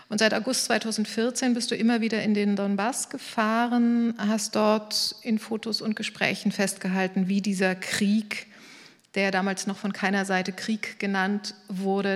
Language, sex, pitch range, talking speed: German, female, 195-220 Hz, 155 wpm